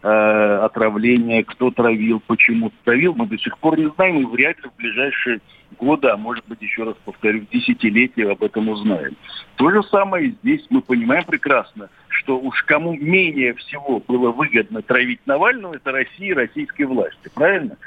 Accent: native